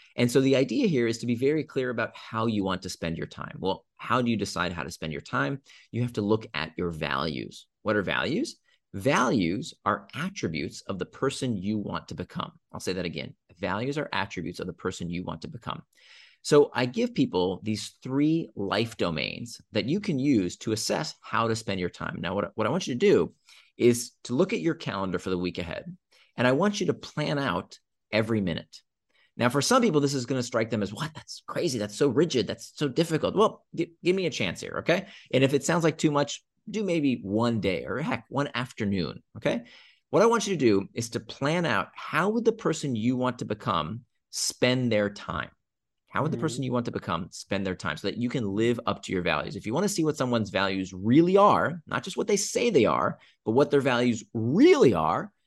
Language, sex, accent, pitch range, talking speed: English, male, American, 100-145 Hz, 235 wpm